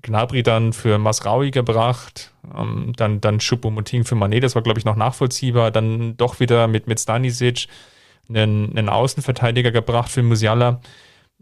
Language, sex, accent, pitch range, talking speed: German, male, German, 110-125 Hz, 145 wpm